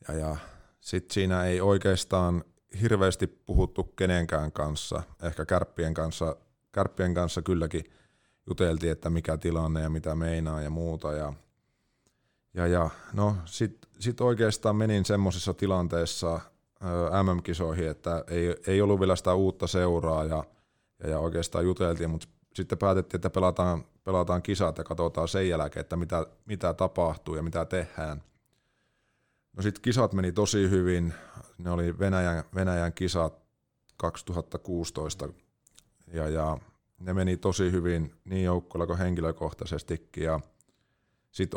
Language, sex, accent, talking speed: Finnish, male, native, 130 wpm